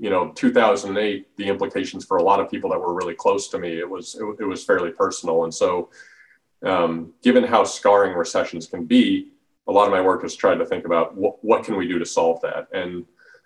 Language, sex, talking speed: English, male, 225 wpm